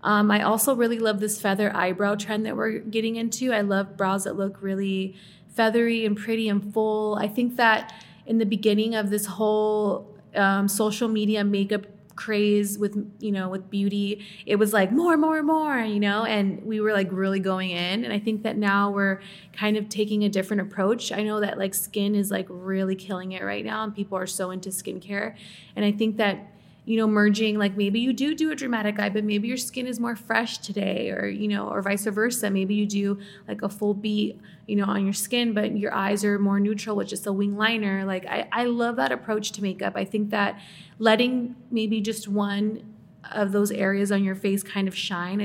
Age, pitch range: 20-39, 195-220 Hz